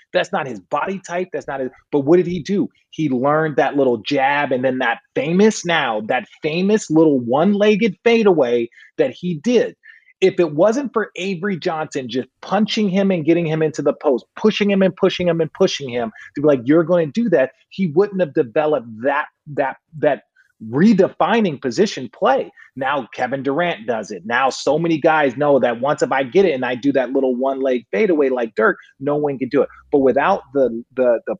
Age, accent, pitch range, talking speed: 30-49, American, 125-185 Hz, 205 wpm